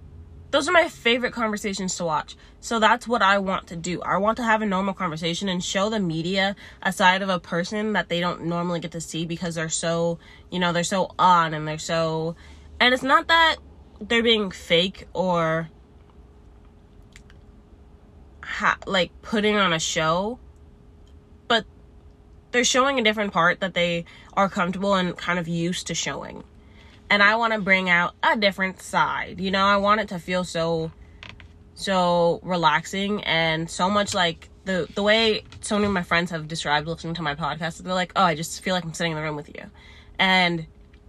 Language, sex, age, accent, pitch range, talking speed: English, female, 20-39, American, 160-200 Hz, 190 wpm